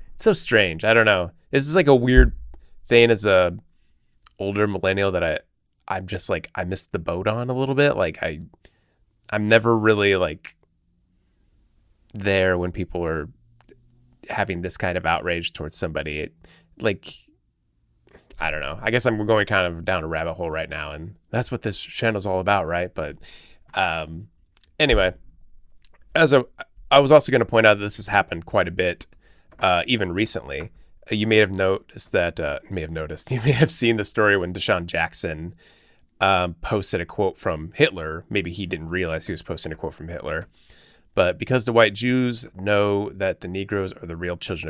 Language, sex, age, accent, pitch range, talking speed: English, male, 20-39, American, 85-110 Hz, 190 wpm